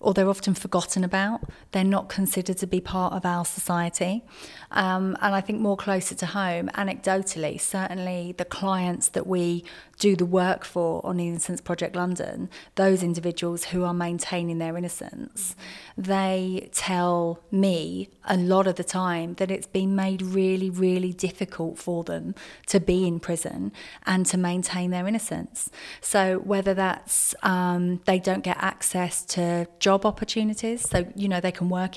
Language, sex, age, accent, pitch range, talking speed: English, female, 30-49, British, 175-195 Hz, 160 wpm